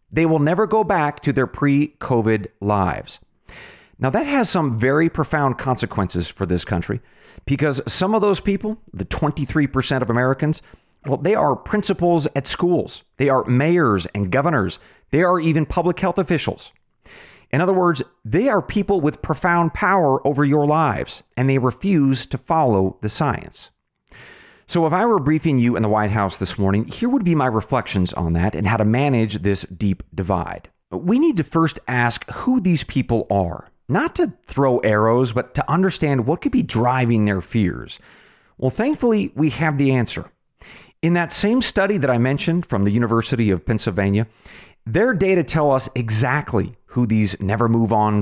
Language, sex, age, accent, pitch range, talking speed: English, male, 40-59, American, 110-165 Hz, 170 wpm